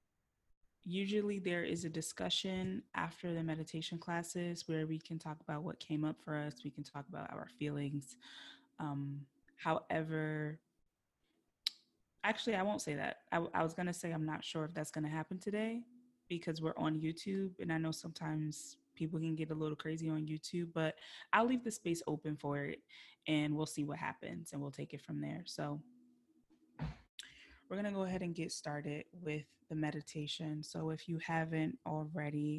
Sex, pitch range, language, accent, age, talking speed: female, 155-195 Hz, English, American, 20-39, 180 wpm